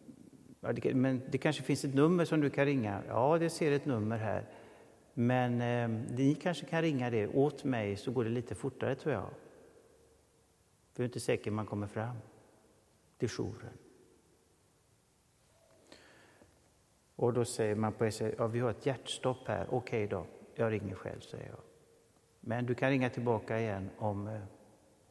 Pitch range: 115-135 Hz